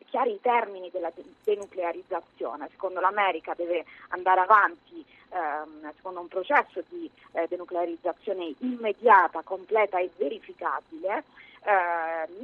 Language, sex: Italian, female